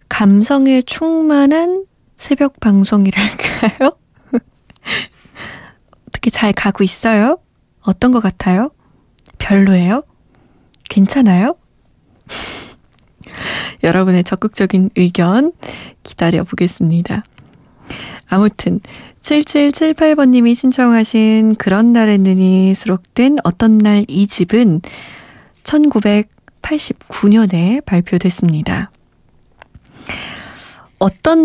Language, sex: Korean, female